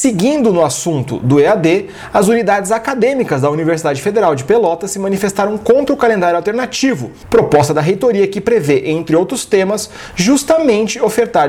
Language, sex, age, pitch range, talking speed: Portuguese, male, 30-49, 165-235 Hz, 150 wpm